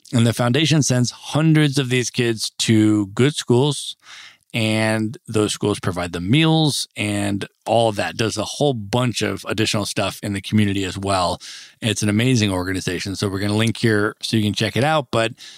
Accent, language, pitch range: American, English, 105-130 Hz